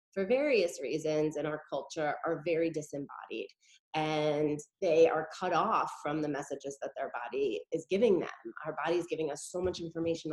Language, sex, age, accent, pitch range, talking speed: English, female, 20-39, American, 160-210 Hz, 180 wpm